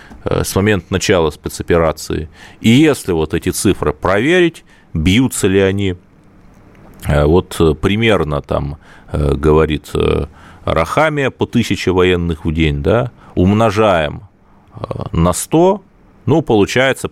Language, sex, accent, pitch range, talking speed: Russian, male, native, 85-120 Hz, 100 wpm